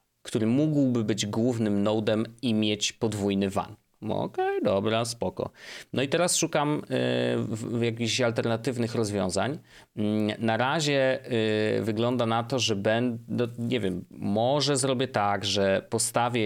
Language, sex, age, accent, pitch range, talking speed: Polish, male, 30-49, native, 105-125 Hz, 120 wpm